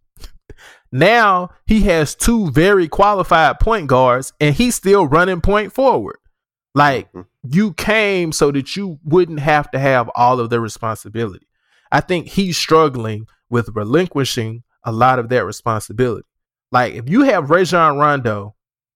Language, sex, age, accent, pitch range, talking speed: English, male, 20-39, American, 125-200 Hz, 140 wpm